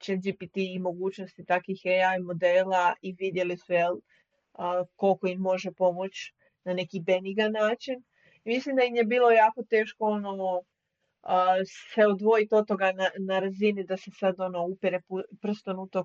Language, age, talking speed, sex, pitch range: Croatian, 30-49, 145 wpm, female, 175-200 Hz